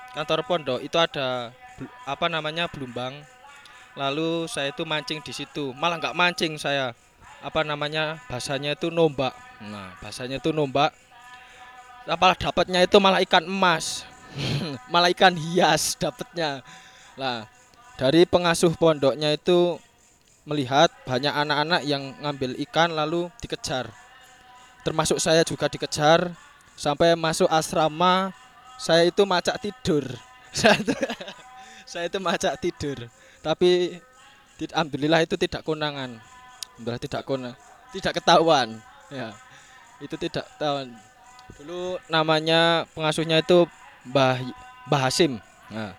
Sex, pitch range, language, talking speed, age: male, 140-180 Hz, Indonesian, 110 wpm, 20-39